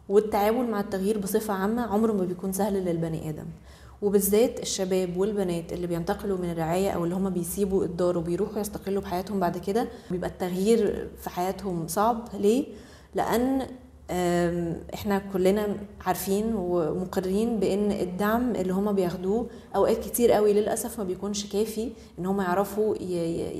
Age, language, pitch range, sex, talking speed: 20-39, Arabic, 180-215 Hz, female, 135 wpm